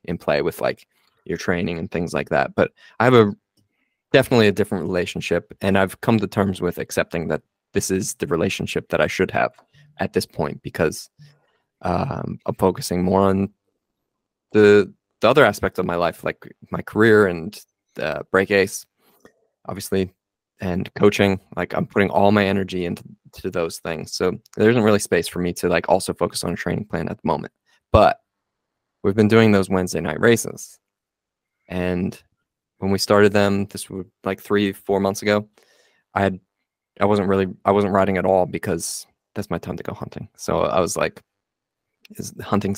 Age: 20-39